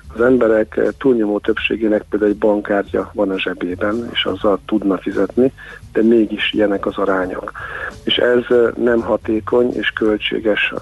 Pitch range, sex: 100-115 Hz, male